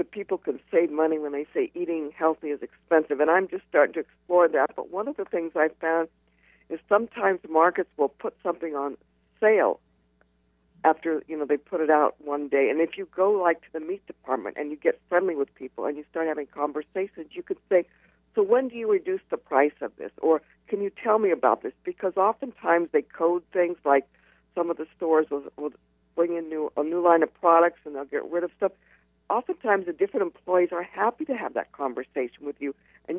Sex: female